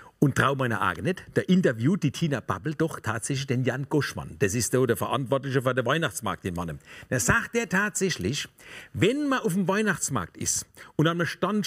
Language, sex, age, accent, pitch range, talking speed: German, male, 50-69, German, 145-200 Hz, 195 wpm